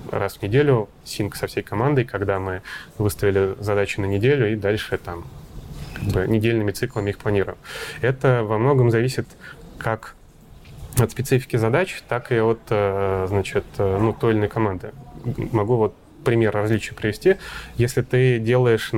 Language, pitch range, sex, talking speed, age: Russian, 105-120 Hz, male, 140 wpm, 20-39